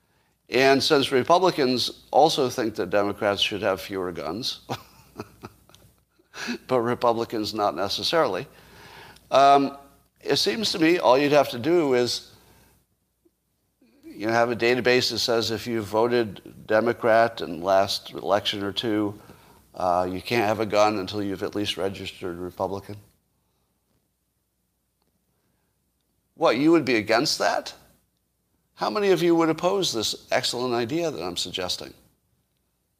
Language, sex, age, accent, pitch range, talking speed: English, male, 50-69, American, 105-155 Hz, 135 wpm